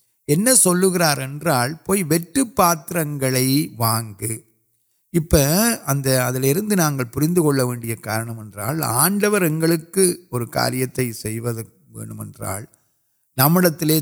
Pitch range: 125-165 Hz